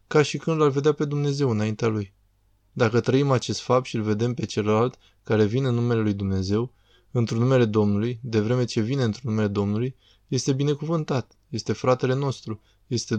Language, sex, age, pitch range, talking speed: Romanian, male, 20-39, 110-135 Hz, 180 wpm